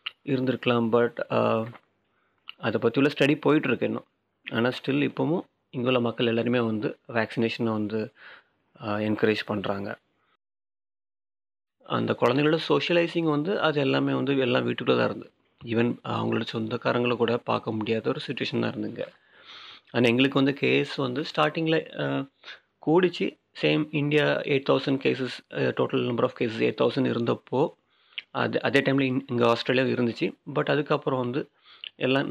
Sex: male